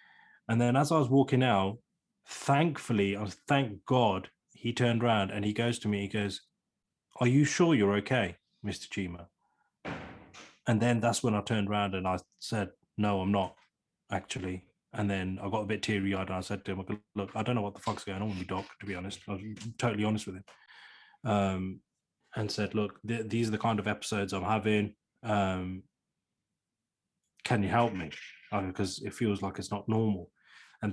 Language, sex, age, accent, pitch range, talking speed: English, male, 20-39, British, 95-110 Hz, 200 wpm